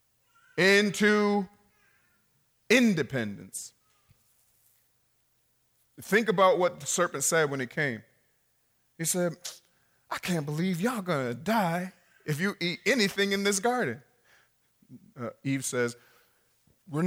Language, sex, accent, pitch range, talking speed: English, male, American, 125-200 Hz, 110 wpm